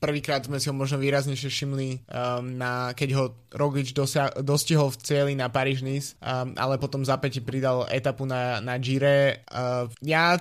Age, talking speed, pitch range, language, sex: 20-39, 160 wpm, 130-150 Hz, Slovak, male